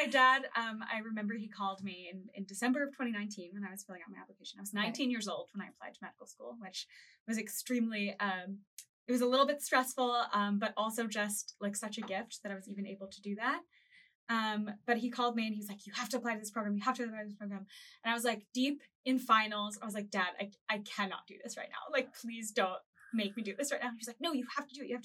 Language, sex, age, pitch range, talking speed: English, female, 20-39, 195-245 Hz, 280 wpm